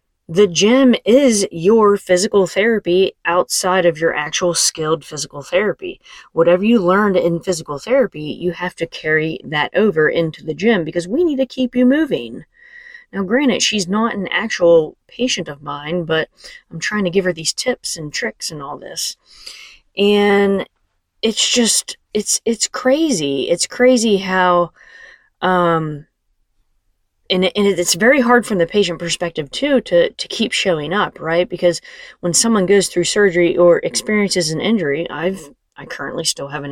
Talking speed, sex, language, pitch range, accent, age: 160 wpm, female, English, 165-215 Hz, American, 20-39